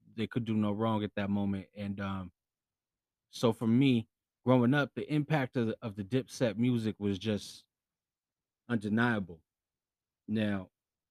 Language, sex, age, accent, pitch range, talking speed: English, male, 20-39, American, 105-115 Hz, 145 wpm